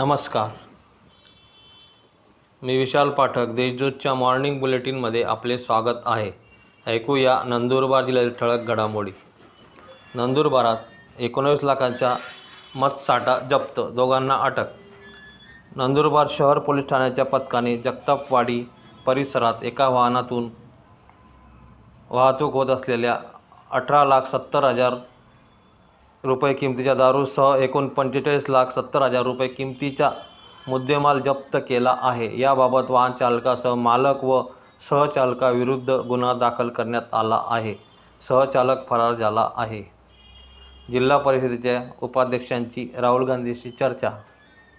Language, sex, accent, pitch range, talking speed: Marathi, male, native, 120-135 Hz, 95 wpm